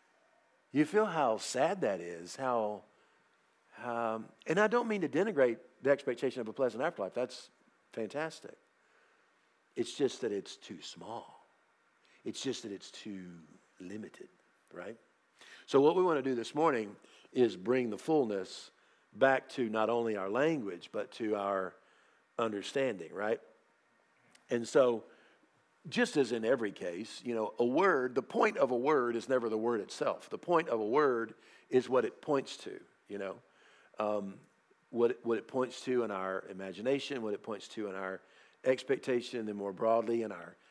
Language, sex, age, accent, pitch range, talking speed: English, male, 50-69, American, 105-130 Hz, 165 wpm